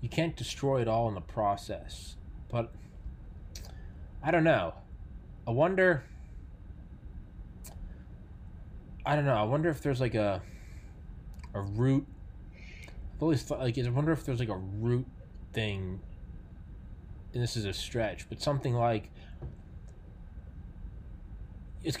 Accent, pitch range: American, 95-125 Hz